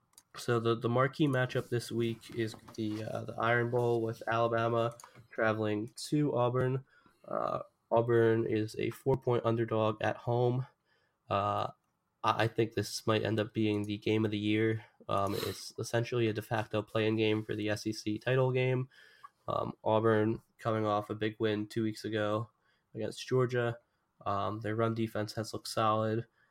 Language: English